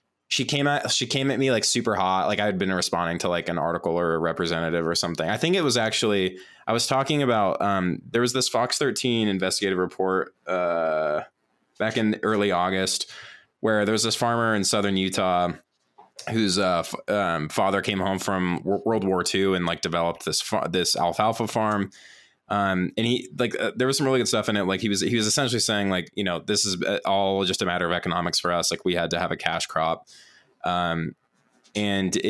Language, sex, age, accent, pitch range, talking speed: English, male, 20-39, American, 90-110 Hz, 210 wpm